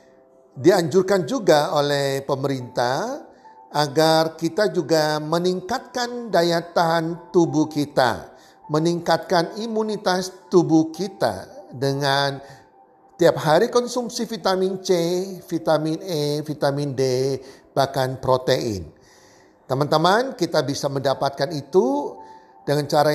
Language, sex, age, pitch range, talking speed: Indonesian, male, 50-69, 135-170 Hz, 90 wpm